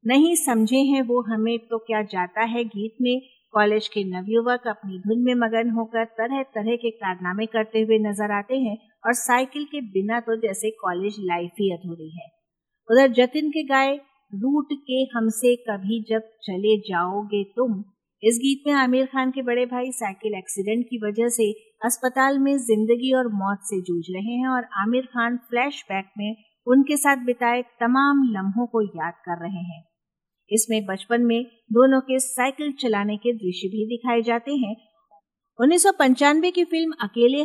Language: Hindi